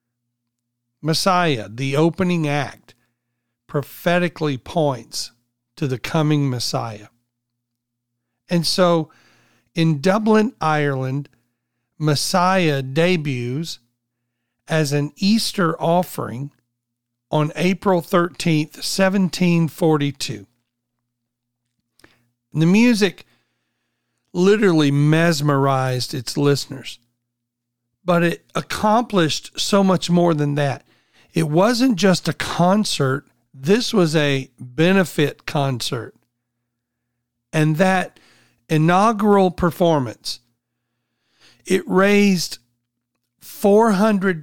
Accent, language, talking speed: American, English, 75 wpm